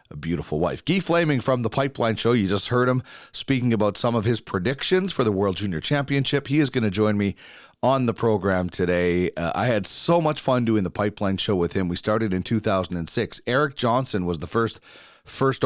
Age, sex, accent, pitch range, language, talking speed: 30-49, male, American, 90-125 Hz, English, 215 wpm